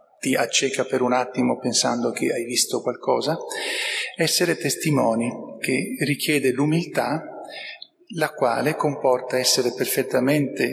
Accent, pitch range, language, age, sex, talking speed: native, 130-185 Hz, Italian, 40-59, male, 110 wpm